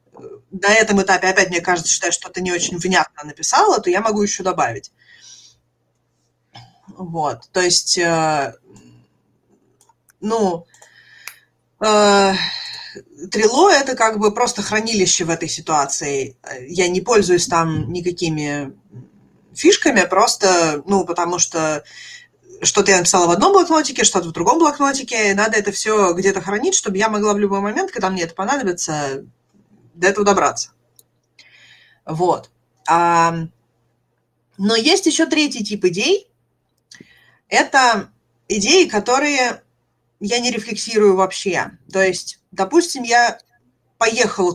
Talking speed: 125 wpm